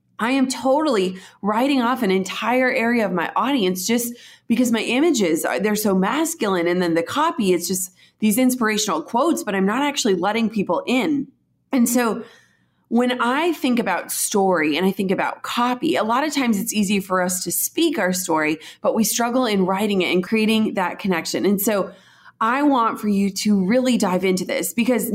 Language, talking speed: English, 195 wpm